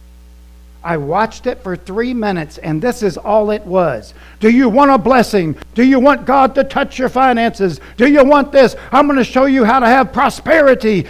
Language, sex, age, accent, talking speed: English, male, 60-79, American, 205 wpm